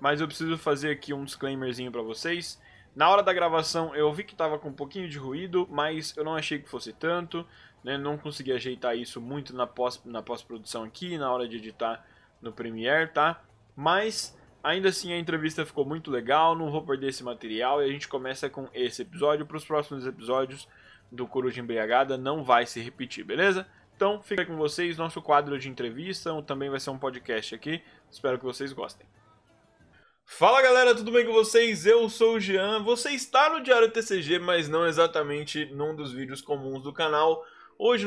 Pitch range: 140-190 Hz